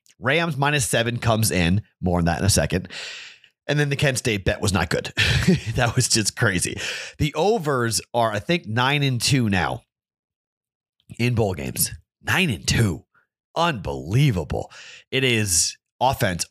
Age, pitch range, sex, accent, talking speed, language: 30-49, 95-130 Hz, male, American, 155 wpm, English